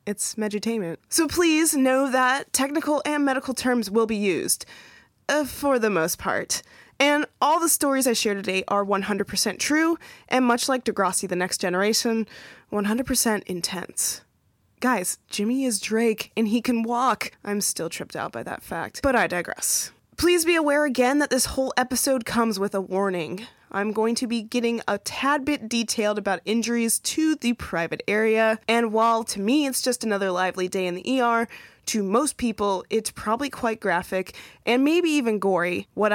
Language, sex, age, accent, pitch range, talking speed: English, female, 20-39, American, 195-255 Hz, 175 wpm